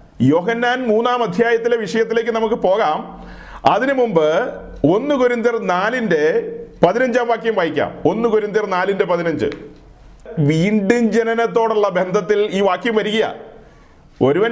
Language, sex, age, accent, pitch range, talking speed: Malayalam, male, 40-59, native, 180-230 Hz, 105 wpm